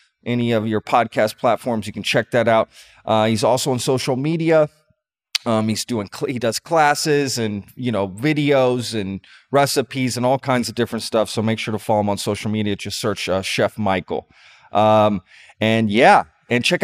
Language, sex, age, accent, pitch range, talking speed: English, male, 30-49, American, 105-130 Hz, 190 wpm